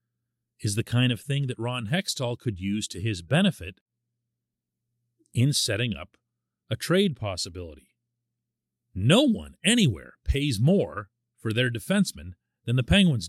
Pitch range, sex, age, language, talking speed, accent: 90-150 Hz, male, 40-59, English, 135 wpm, American